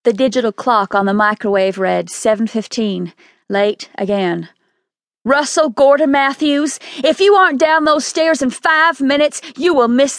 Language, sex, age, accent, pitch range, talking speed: English, female, 40-59, American, 215-290 Hz, 145 wpm